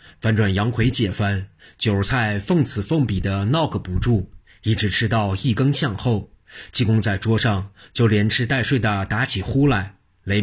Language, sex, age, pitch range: Chinese, male, 30-49, 100-120 Hz